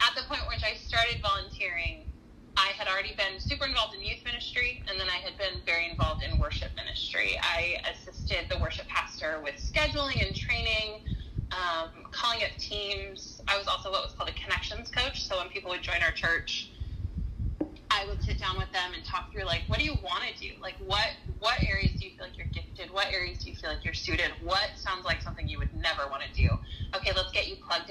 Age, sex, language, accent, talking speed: 20-39, female, English, American, 225 wpm